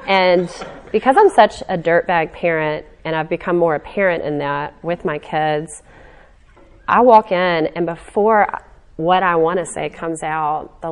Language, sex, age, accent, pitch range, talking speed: English, female, 30-49, American, 165-195 Hz, 165 wpm